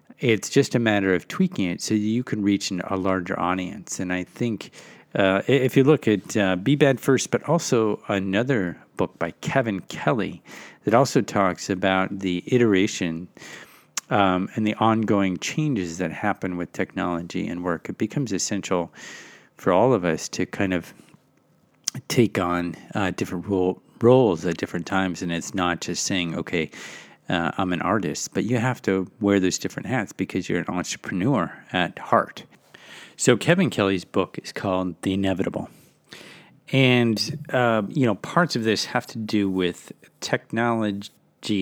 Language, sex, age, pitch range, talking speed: English, male, 50-69, 90-115 Hz, 165 wpm